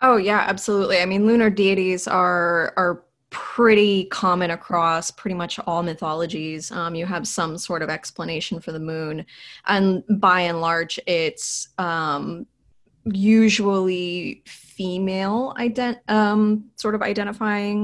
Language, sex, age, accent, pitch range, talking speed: English, female, 20-39, American, 165-200 Hz, 130 wpm